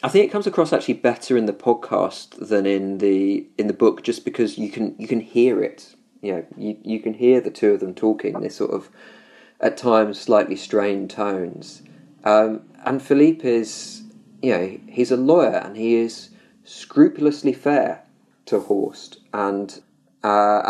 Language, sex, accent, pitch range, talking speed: English, male, British, 100-125 Hz, 185 wpm